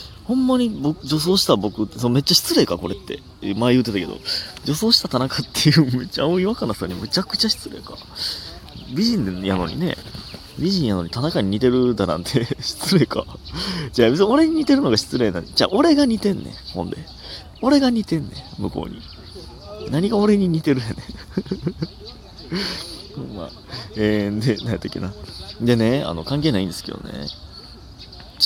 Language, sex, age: Japanese, male, 30-49